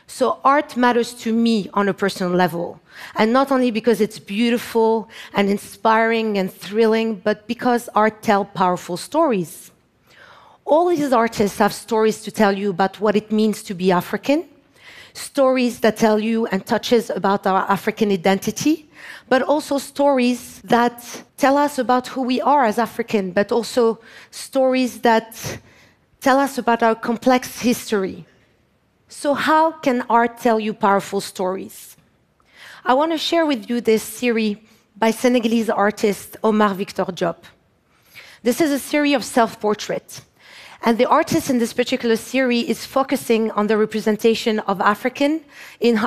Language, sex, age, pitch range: Japanese, female, 40-59, 205-255 Hz